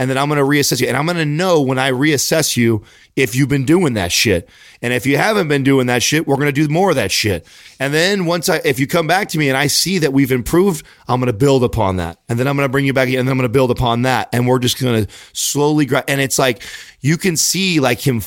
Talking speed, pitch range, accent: 280 wpm, 110-140 Hz, American